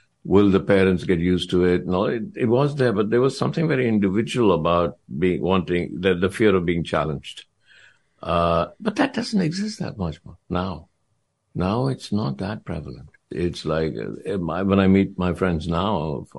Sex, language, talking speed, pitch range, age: male, English, 185 wpm, 90-110 Hz, 60-79